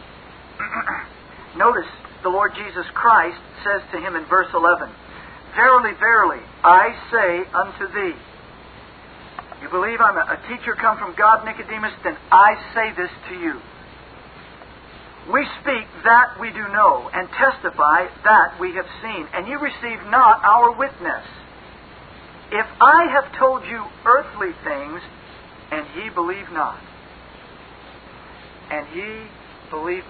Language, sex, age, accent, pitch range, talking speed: English, male, 50-69, American, 180-215 Hz, 130 wpm